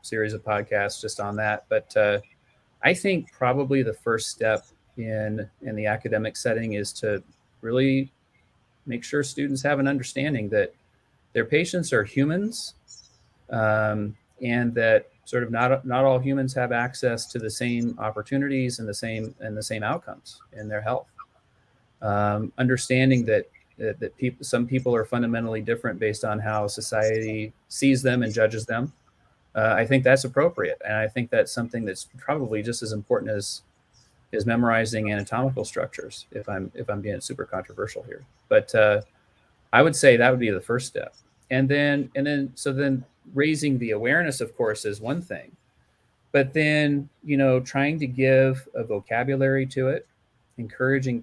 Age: 30-49